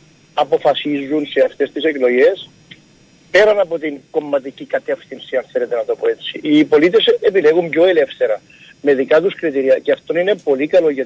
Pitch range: 150-215 Hz